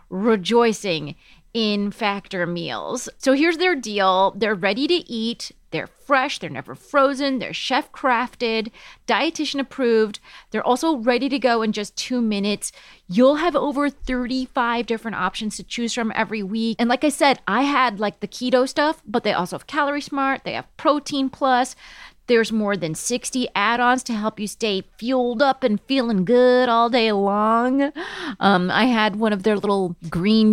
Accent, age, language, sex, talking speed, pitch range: American, 30-49, English, female, 170 wpm, 195-260 Hz